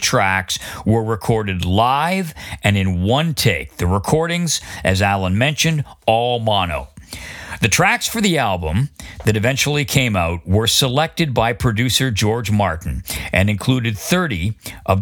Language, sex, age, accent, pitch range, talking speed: English, male, 50-69, American, 95-130 Hz, 135 wpm